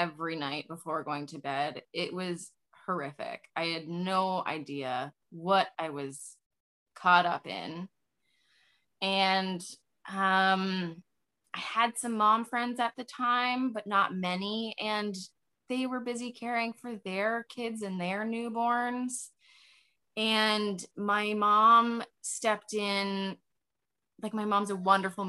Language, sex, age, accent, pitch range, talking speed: English, female, 20-39, American, 170-210 Hz, 125 wpm